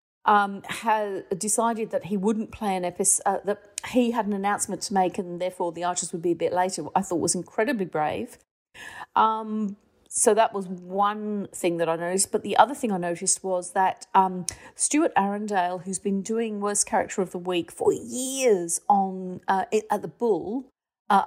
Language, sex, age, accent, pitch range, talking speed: English, female, 40-59, British, 180-215 Hz, 185 wpm